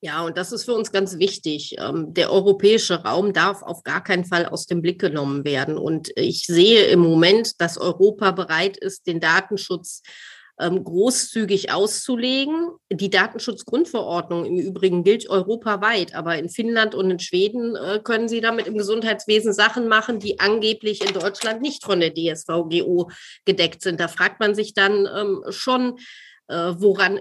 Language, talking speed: German, 155 wpm